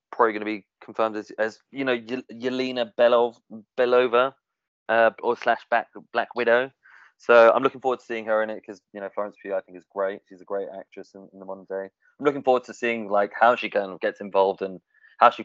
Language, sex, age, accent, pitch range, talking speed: English, male, 20-39, British, 100-125 Hz, 235 wpm